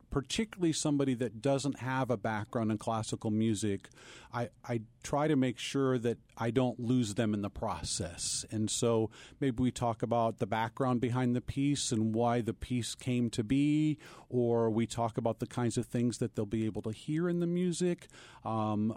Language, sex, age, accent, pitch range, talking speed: English, male, 40-59, American, 115-150 Hz, 190 wpm